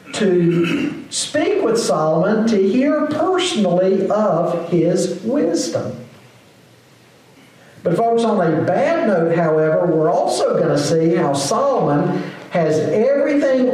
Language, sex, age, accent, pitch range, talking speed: English, male, 50-69, American, 150-210 Hz, 115 wpm